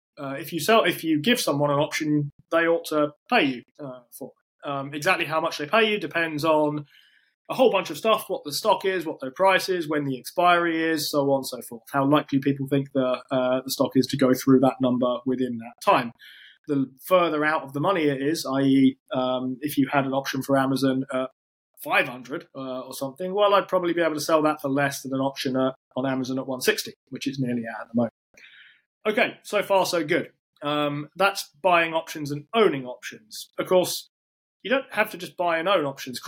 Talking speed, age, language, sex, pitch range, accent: 225 wpm, 20-39, English, male, 130-165 Hz, British